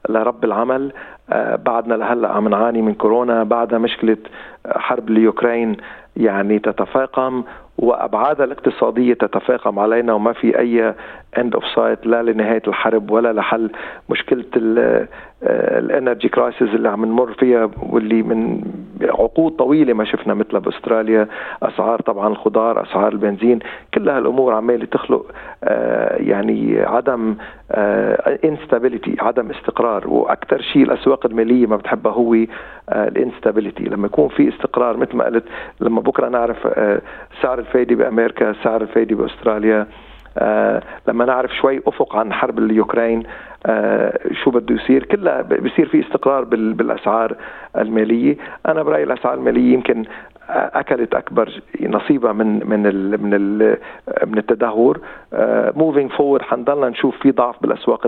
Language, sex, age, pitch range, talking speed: Arabic, male, 40-59, 110-125 Hz, 125 wpm